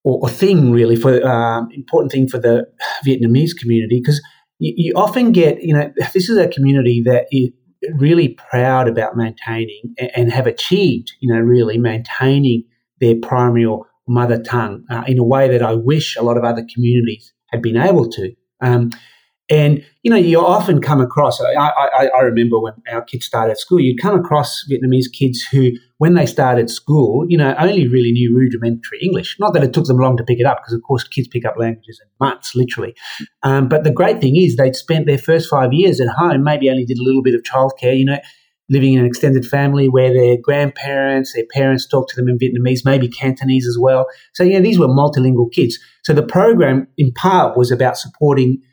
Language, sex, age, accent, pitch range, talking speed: English, male, 30-49, Australian, 120-145 Hz, 210 wpm